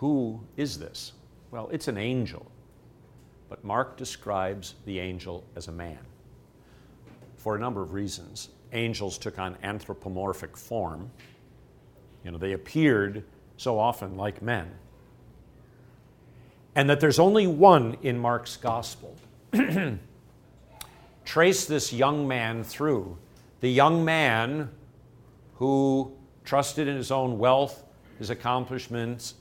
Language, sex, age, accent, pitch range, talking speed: English, male, 50-69, American, 105-135 Hz, 115 wpm